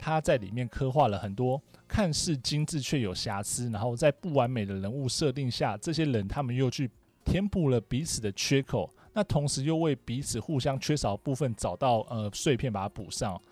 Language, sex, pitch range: Chinese, male, 110-145 Hz